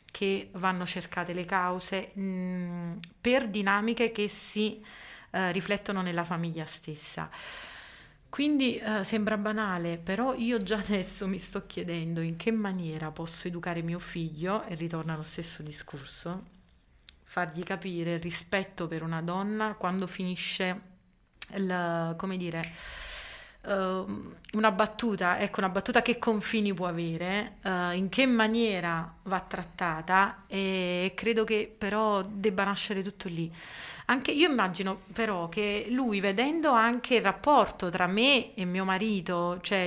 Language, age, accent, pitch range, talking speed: Italian, 30-49, native, 175-215 Hz, 135 wpm